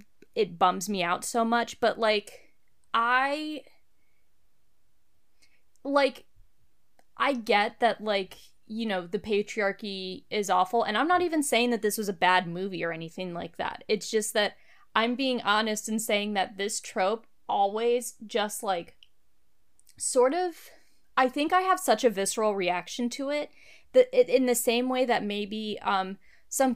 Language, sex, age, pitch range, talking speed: English, female, 20-39, 200-245 Hz, 155 wpm